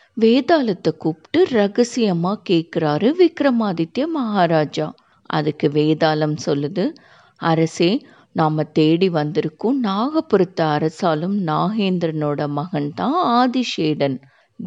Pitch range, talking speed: 150-225 Hz, 80 wpm